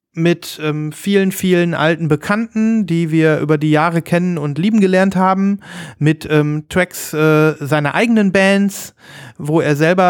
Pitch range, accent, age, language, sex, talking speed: 145-175 Hz, German, 30-49, German, male, 155 wpm